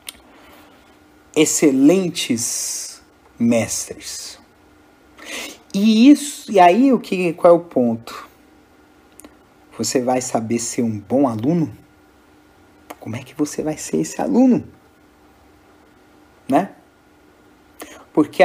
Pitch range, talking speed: 125-190 Hz, 95 wpm